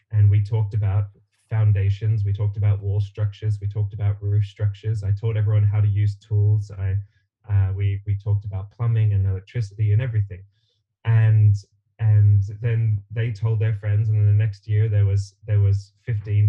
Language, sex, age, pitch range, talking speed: English, male, 10-29, 100-110 Hz, 180 wpm